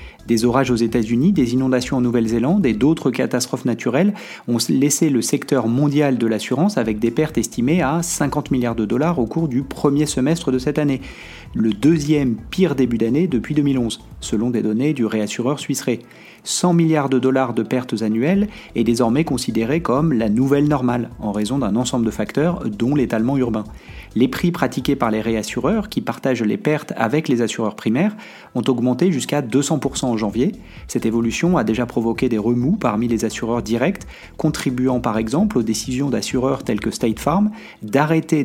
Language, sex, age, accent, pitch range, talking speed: French, male, 30-49, French, 115-145 Hz, 180 wpm